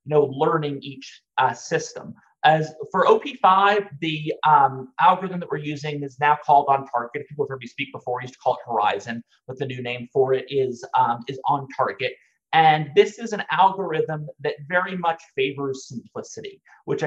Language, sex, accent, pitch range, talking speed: English, male, American, 140-185 Hz, 190 wpm